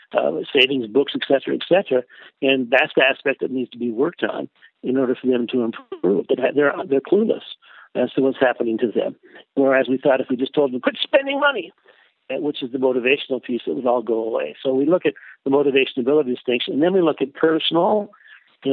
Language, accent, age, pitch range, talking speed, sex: English, American, 60-79, 125-150 Hz, 220 wpm, male